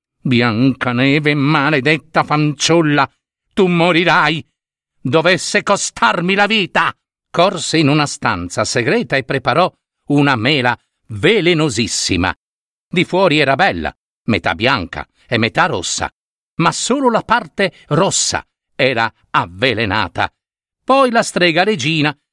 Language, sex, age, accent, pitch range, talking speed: Italian, male, 50-69, native, 125-200 Hz, 110 wpm